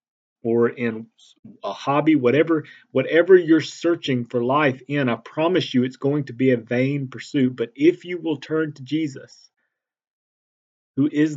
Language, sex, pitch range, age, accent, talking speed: English, male, 120-150 Hz, 40-59, American, 160 wpm